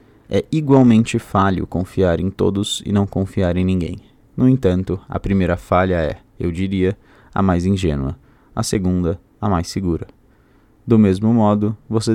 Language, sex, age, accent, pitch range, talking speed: Portuguese, male, 20-39, Brazilian, 90-110 Hz, 155 wpm